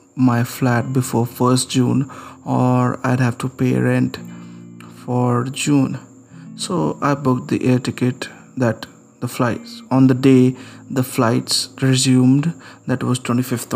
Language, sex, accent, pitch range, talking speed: English, male, Indian, 120-130 Hz, 135 wpm